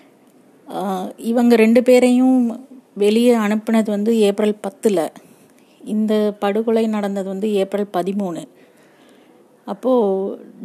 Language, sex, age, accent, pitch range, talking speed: Tamil, female, 30-49, native, 200-230 Hz, 85 wpm